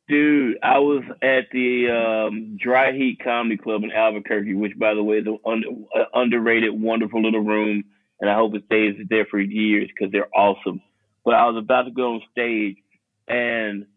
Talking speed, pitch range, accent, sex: 190 wpm, 110-130 Hz, American, male